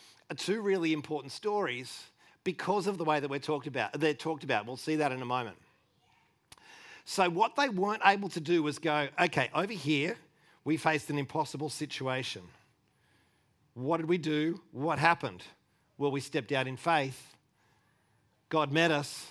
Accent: Australian